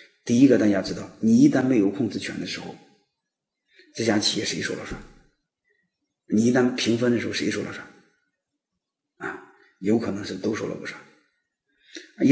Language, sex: Chinese, male